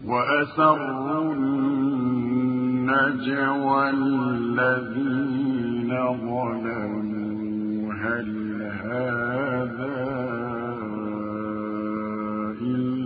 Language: Arabic